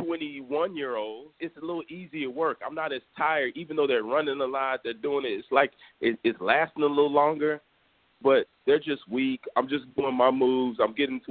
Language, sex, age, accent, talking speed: English, male, 30-49, American, 205 wpm